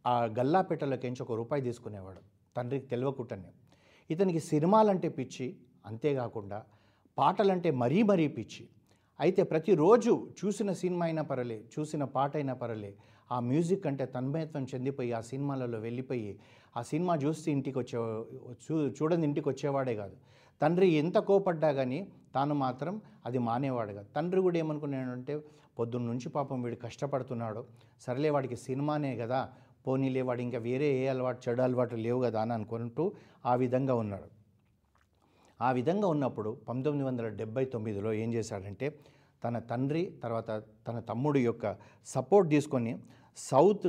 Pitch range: 115-150 Hz